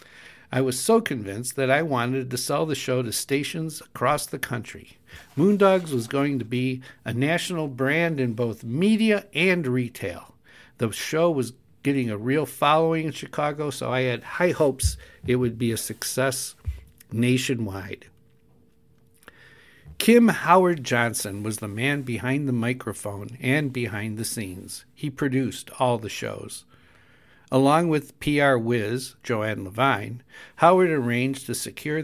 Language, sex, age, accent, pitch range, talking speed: English, male, 60-79, American, 115-145 Hz, 145 wpm